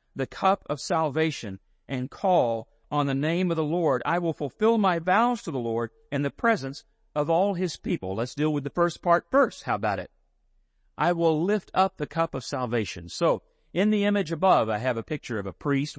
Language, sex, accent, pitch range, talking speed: English, male, American, 115-165 Hz, 215 wpm